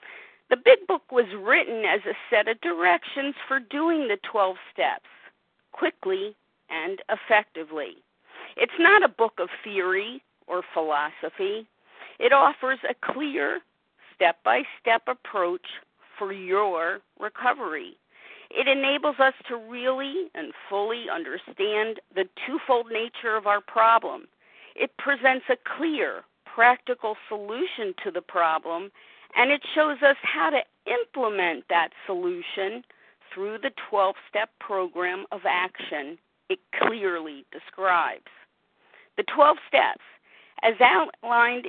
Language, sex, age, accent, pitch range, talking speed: English, female, 50-69, American, 205-295 Hz, 115 wpm